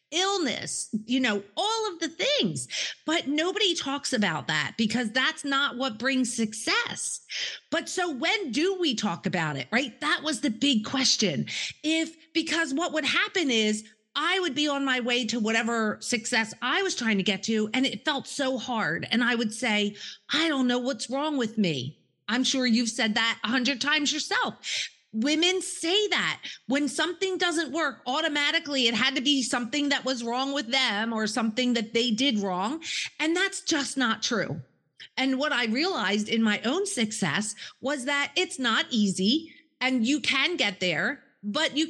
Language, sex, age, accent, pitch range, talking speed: English, female, 40-59, American, 225-315 Hz, 180 wpm